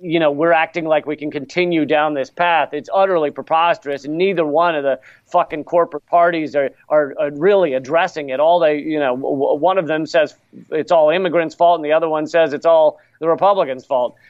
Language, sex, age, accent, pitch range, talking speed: English, male, 50-69, American, 155-185 Hz, 215 wpm